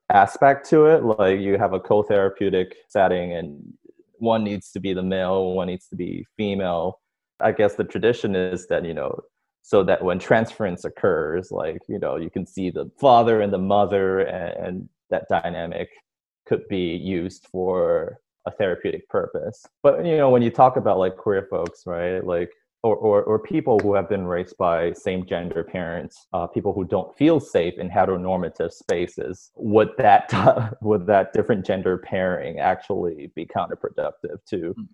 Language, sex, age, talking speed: English, male, 20-39, 170 wpm